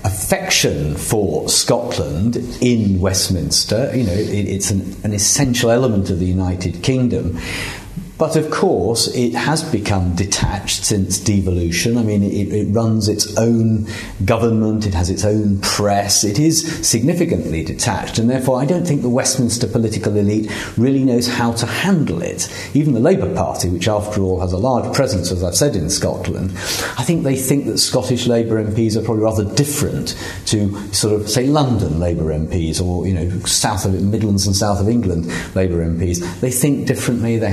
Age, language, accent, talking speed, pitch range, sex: 50-69, English, British, 175 wpm, 95-120 Hz, male